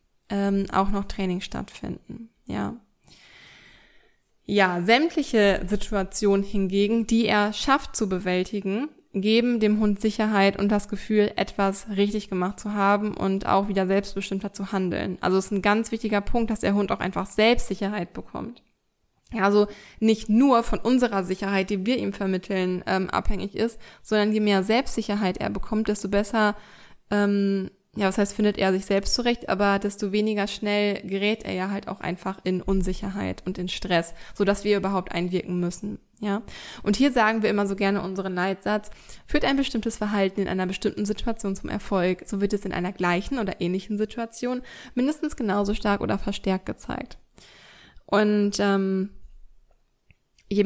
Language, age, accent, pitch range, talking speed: German, 20-39, German, 195-215 Hz, 160 wpm